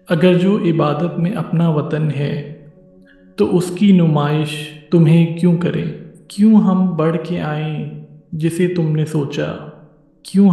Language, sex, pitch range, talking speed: Hindi, male, 150-175 Hz, 125 wpm